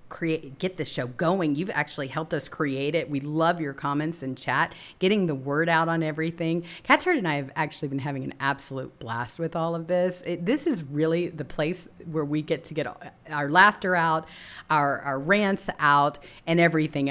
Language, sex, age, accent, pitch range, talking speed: English, female, 40-59, American, 140-185 Hz, 200 wpm